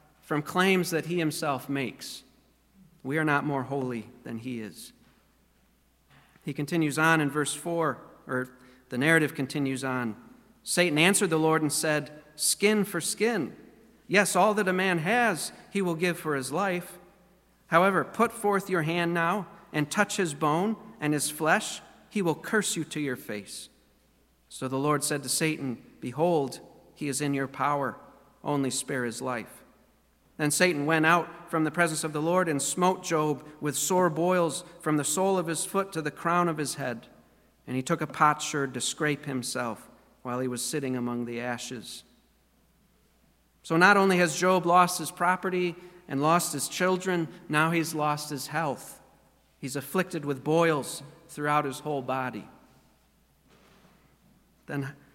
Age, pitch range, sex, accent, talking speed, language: 40-59, 140-175 Hz, male, American, 165 wpm, English